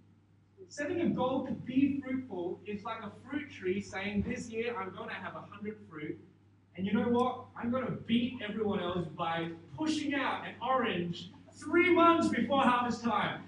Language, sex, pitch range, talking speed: English, male, 170-275 Hz, 185 wpm